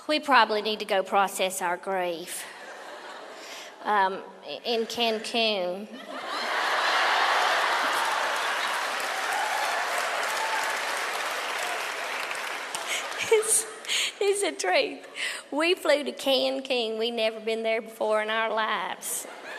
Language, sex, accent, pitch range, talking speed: English, female, American, 225-300 Hz, 85 wpm